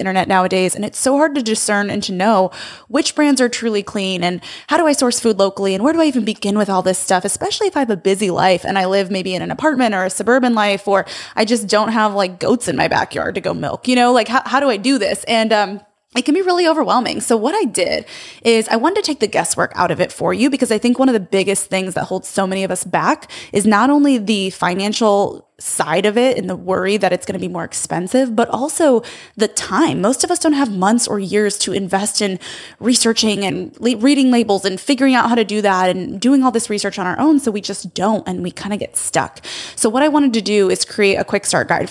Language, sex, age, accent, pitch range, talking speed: English, female, 20-39, American, 190-245 Hz, 265 wpm